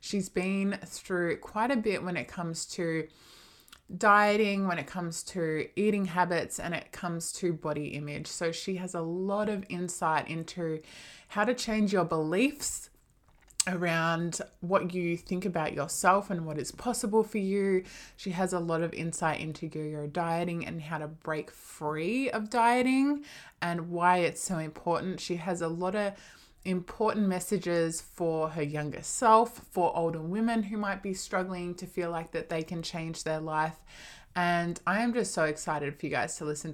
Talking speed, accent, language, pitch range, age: 175 wpm, Australian, English, 160-200 Hz, 20-39